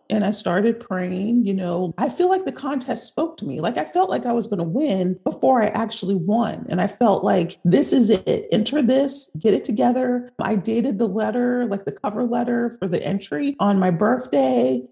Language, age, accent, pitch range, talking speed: English, 40-59, American, 190-245 Hz, 215 wpm